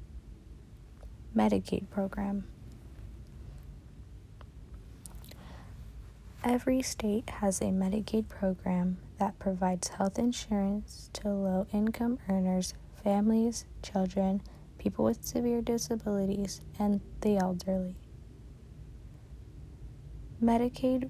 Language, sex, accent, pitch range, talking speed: English, female, American, 185-210 Hz, 70 wpm